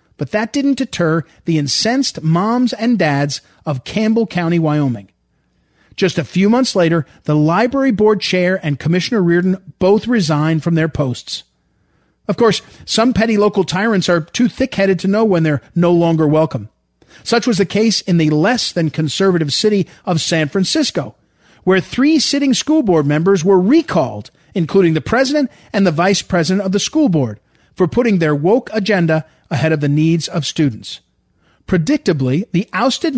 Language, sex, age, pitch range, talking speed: English, male, 40-59, 155-220 Hz, 165 wpm